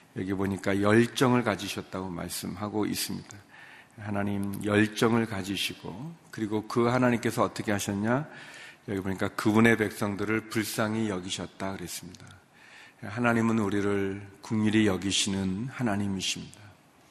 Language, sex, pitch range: Korean, male, 100-120 Hz